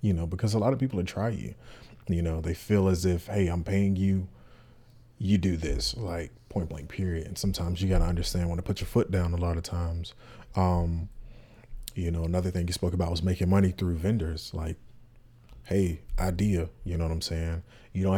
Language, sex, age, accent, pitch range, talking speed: English, male, 30-49, American, 85-105 Hz, 215 wpm